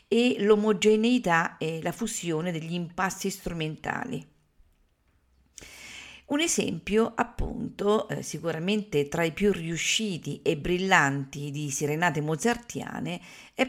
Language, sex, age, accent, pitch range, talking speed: Italian, female, 50-69, native, 150-200 Hz, 95 wpm